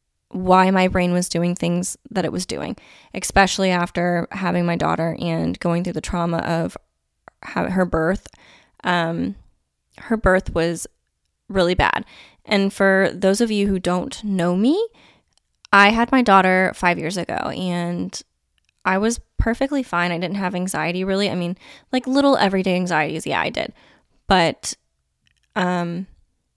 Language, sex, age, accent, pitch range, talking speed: English, female, 20-39, American, 170-195 Hz, 150 wpm